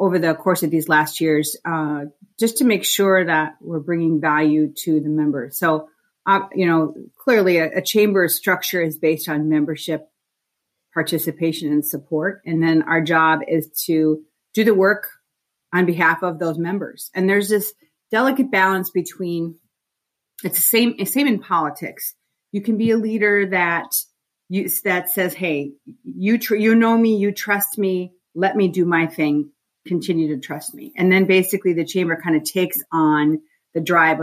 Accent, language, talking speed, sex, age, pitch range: American, English, 170 wpm, female, 40-59, 160-195 Hz